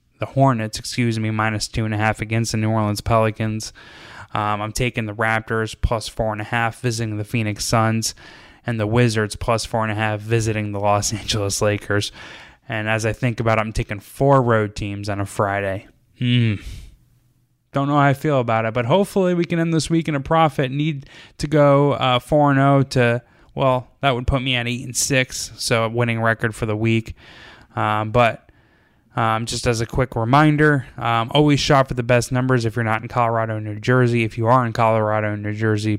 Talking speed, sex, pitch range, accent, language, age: 210 wpm, male, 110-125 Hz, American, English, 10-29